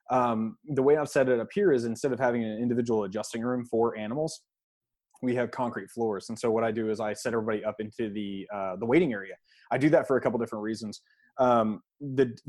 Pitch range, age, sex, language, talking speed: 110-130 Hz, 20-39, male, English, 230 wpm